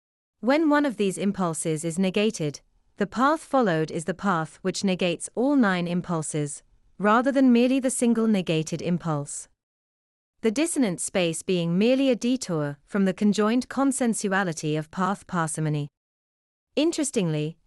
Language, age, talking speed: English, 30-49, 135 wpm